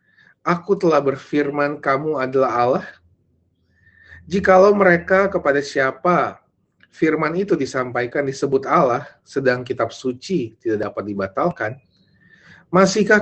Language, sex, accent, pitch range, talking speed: Indonesian, male, native, 130-185 Hz, 100 wpm